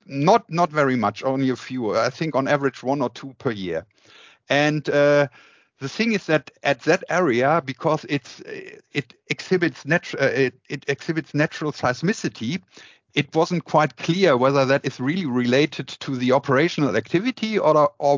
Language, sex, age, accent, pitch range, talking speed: English, male, 50-69, German, 130-155 Hz, 165 wpm